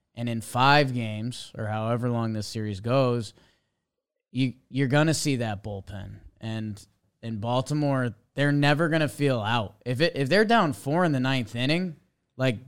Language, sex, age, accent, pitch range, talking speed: English, male, 20-39, American, 115-135 Hz, 165 wpm